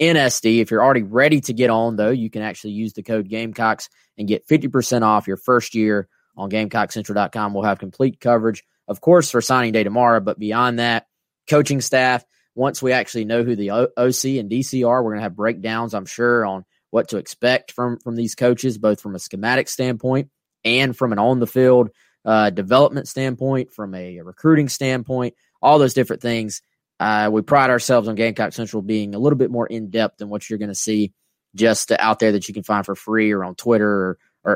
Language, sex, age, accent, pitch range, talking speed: English, male, 20-39, American, 110-130 Hz, 210 wpm